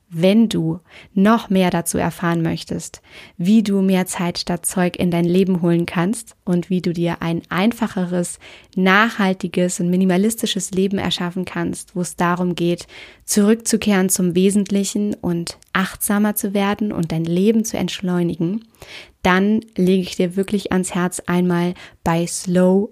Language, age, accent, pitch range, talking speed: German, 20-39, German, 175-200 Hz, 145 wpm